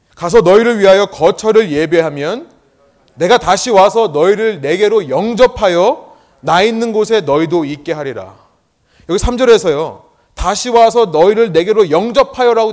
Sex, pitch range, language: male, 165-260 Hz, Korean